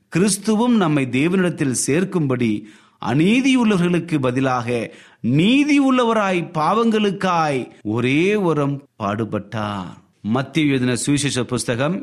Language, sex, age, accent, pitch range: Tamil, male, 30-49, native, 115-170 Hz